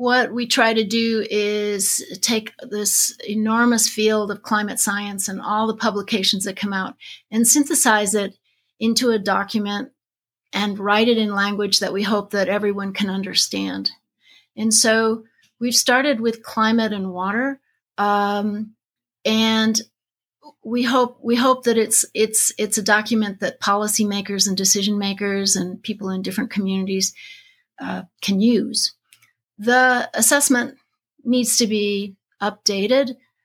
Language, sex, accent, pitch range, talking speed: English, female, American, 200-235 Hz, 140 wpm